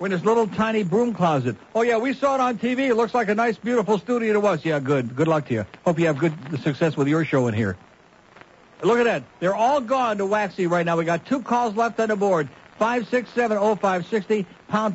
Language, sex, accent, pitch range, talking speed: English, male, American, 160-215 Hz, 235 wpm